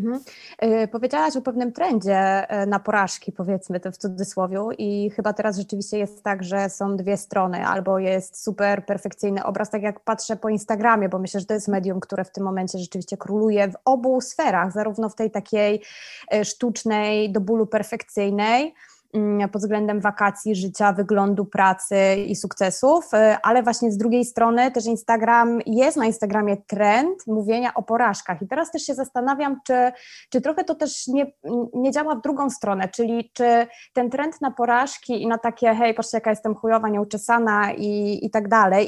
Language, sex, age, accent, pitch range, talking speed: Polish, female, 20-39, native, 200-250 Hz, 170 wpm